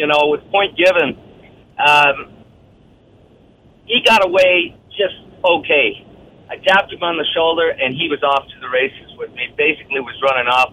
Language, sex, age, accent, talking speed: English, male, 50-69, American, 170 wpm